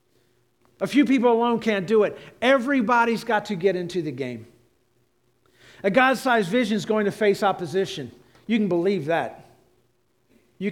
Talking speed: 150 wpm